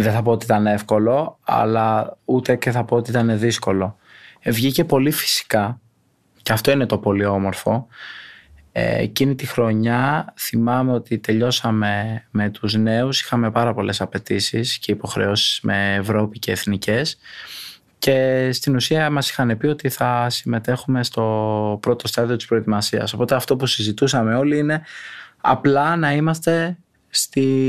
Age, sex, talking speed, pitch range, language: 20-39, male, 145 wpm, 110-140 Hz, Greek